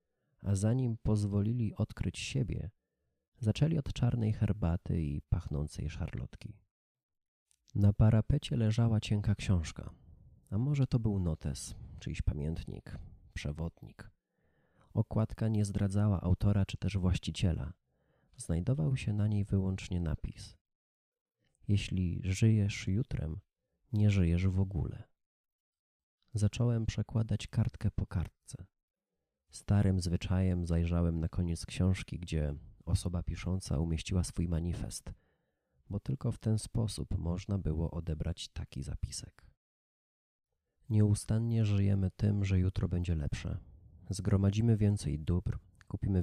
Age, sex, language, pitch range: 30-49, male, Polish, 85-105 Hz